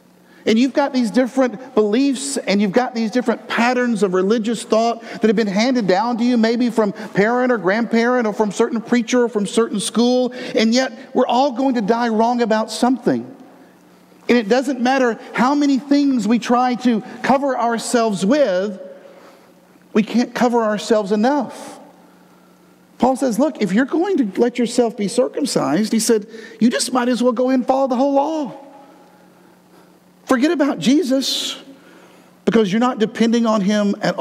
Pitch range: 215-260 Hz